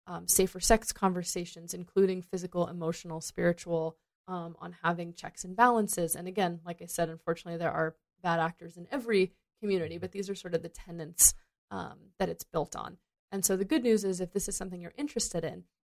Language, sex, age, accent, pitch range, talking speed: English, female, 20-39, American, 170-195 Hz, 195 wpm